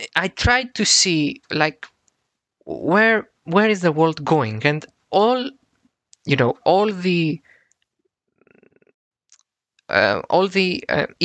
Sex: male